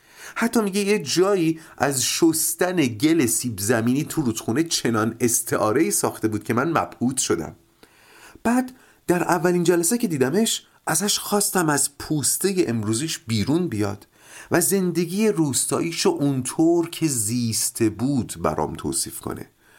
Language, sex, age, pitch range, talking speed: Persian, male, 40-59, 115-170 Hz, 130 wpm